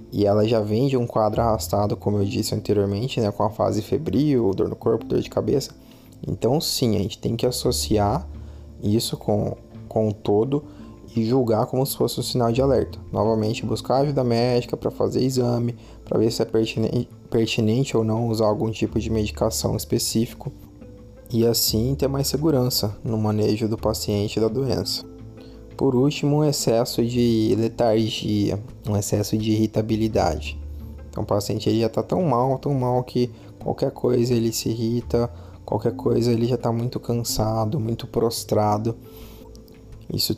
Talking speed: 165 wpm